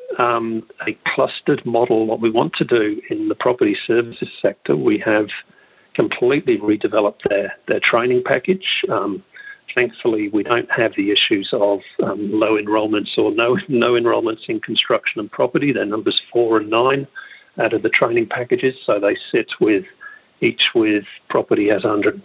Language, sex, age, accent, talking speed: English, male, 50-69, British, 160 wpm